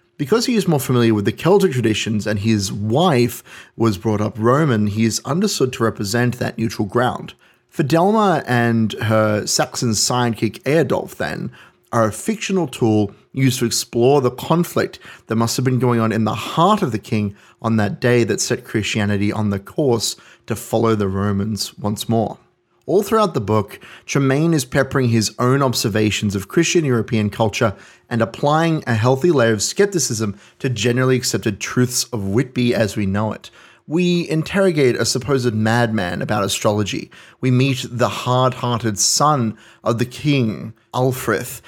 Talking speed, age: 165 wpm, 30-49